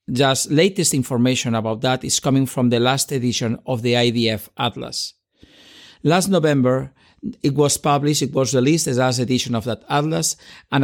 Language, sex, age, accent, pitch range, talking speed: English, male, 50-69, Spanish, 125-155 Hz, 165 wpm